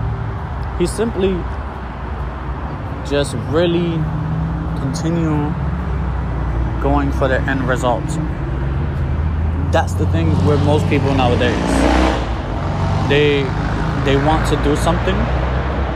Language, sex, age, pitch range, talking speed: English, male, 20-39, 95-145 Hz, 85 wpm